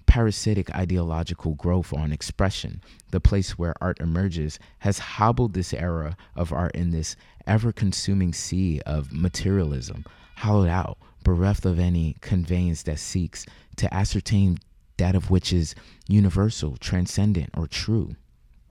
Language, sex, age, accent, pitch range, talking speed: English, male, 20-39, American, 80-100 Hz, 130 wpm